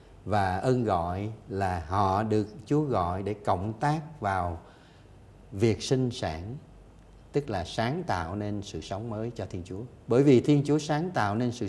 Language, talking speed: Vietnamese, 175 wpm